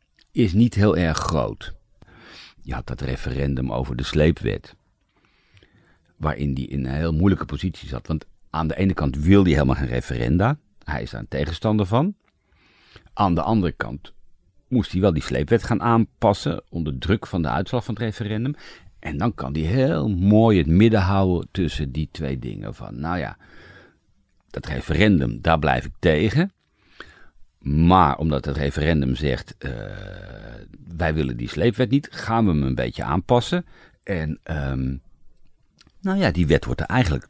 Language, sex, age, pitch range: Dutch, male, 50-69, 75-110 Hz